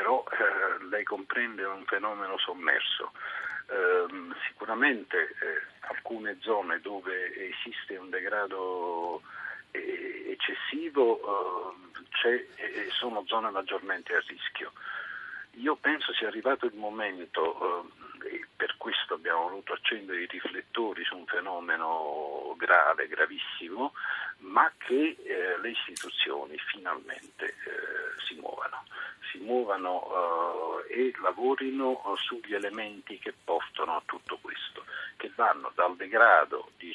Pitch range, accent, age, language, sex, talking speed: 275-435 Hz, native, 50-69, Italian, male, 120 wpm